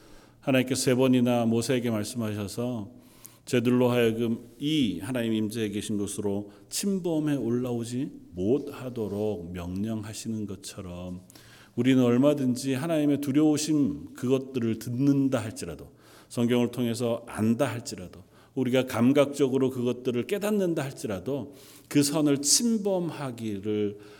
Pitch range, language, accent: 110-140 Hz, Korean, native